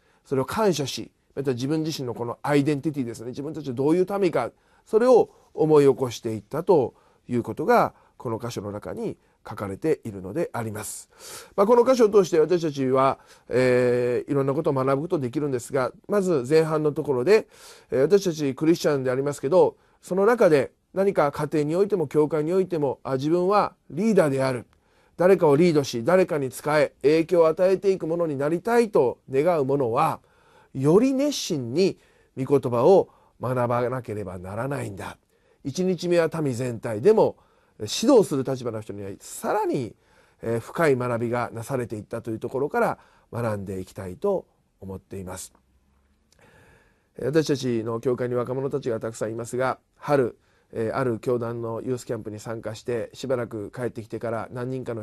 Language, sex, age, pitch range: Japanese, male, 40-59, 115-175 Hz